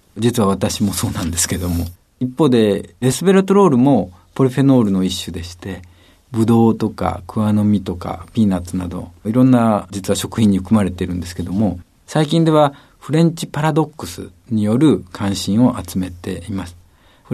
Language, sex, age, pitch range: Japanese, male, 50-69, 95-135 Hz